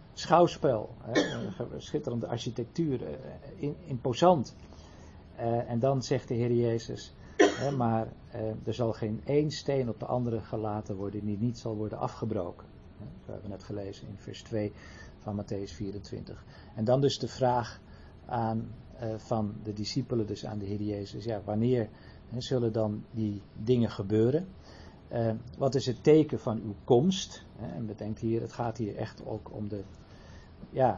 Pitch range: 105-125 Hz